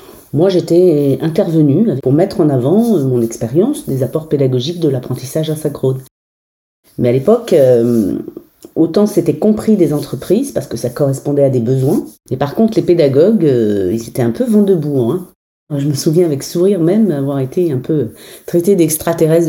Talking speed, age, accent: 170 wpm, 40-59, French